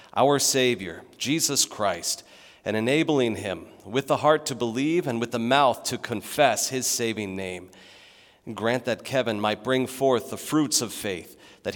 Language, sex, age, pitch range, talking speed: English, male, 40-59, 100-140 Hz, 170 wpm